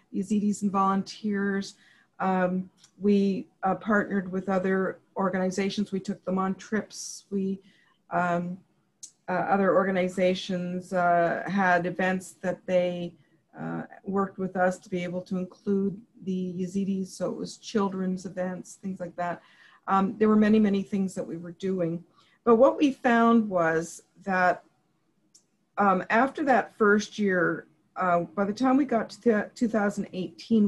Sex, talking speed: female, 145 wpm